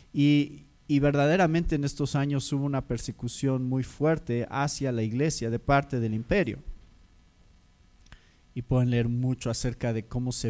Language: Spanish